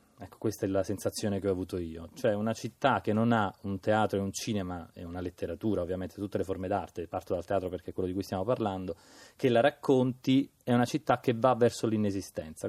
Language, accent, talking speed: Italian, native, 225 wpm